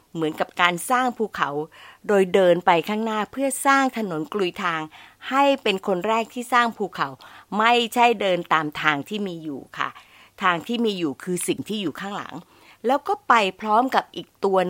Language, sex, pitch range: Thai, female, 175-235 Hz